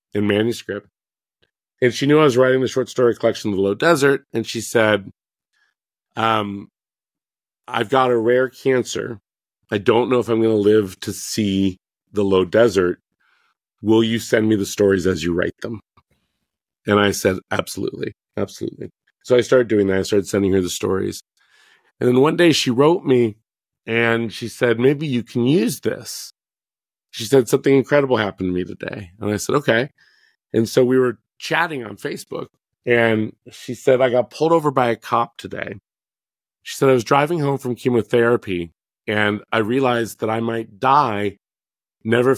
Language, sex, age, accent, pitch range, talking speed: English, male, 40-59, American, 105-125 Hz, 175 wpm